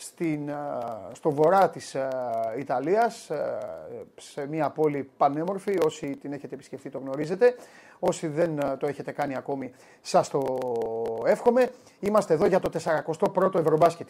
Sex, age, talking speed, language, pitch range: male, 30-49, 125 wpm, Greek, 155-200 Hz